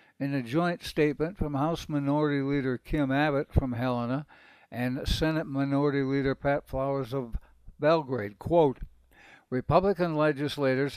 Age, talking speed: 60-79, 125 wpm